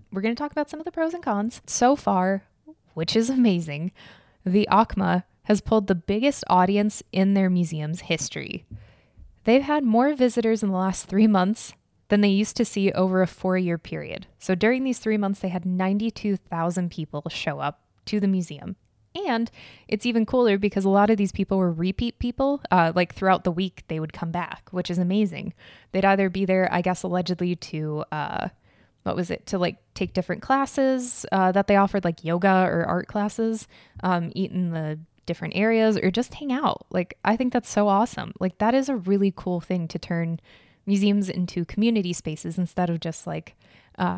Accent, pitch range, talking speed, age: American, 175-215 Hz, 195 wpm, 10-29